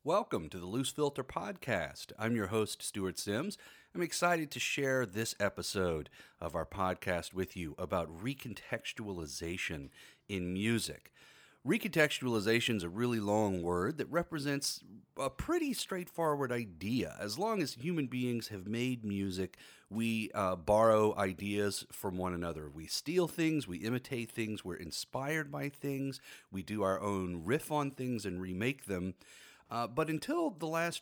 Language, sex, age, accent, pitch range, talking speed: English, male, 40-59, American, 95-135 Hz, 150 wpm